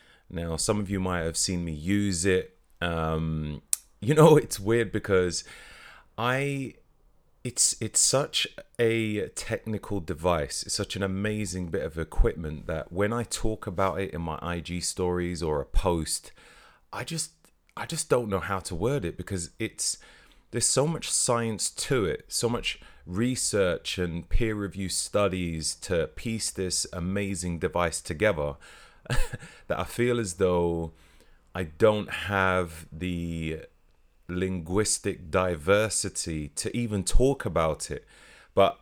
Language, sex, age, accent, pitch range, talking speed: English, male, 30-49, British, 85-105 Hz, 140 wpm